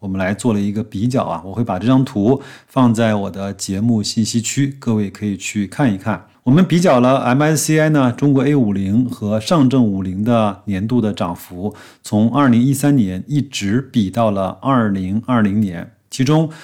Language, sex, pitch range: Chinese, male, 100-130 Hz